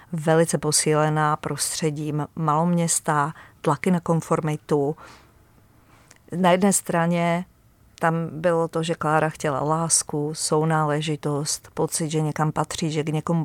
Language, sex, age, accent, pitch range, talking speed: Czech, female, 40-59, native, 155-175 Hz, 110 wpm